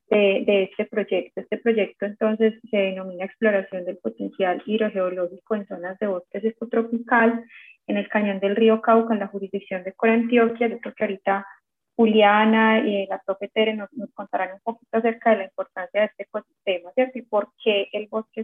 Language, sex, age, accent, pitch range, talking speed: Spanish, female, 20-39, Colombian, 195-230 Hz, 175 wpm